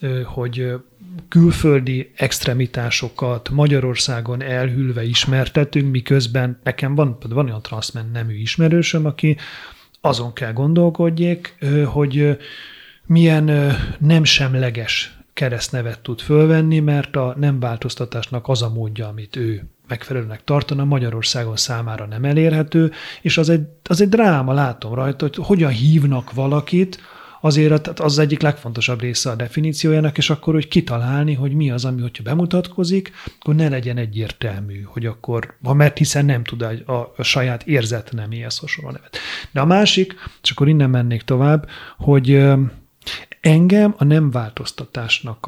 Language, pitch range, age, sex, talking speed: Hungarian, 120-155 Hz, 30-49, male, 130 wpm